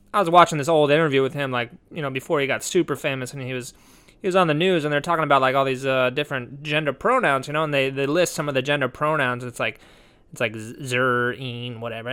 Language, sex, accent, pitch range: English, male, American, 130-165 Hz